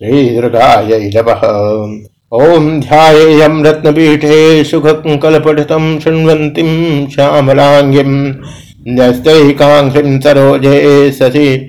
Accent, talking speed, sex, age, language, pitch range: native, 50 wpm, male, 60-79, Hindi, 125-150 Hz